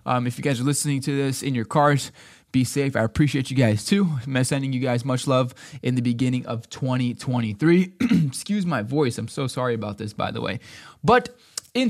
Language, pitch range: English, 130-175 Hz